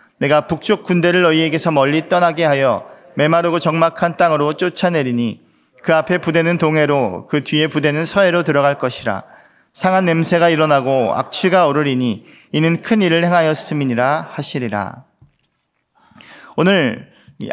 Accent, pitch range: native, 140-190 Hz